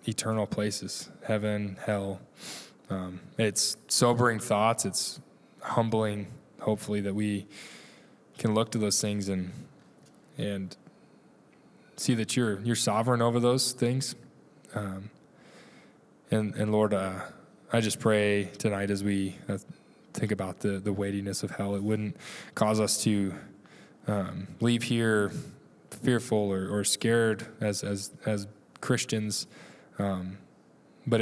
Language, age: English, 10-29